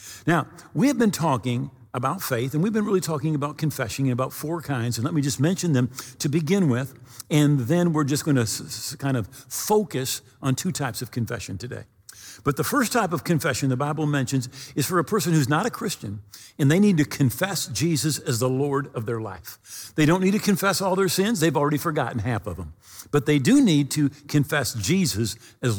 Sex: male